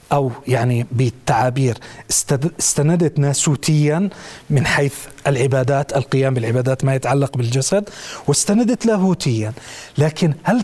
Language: Arabic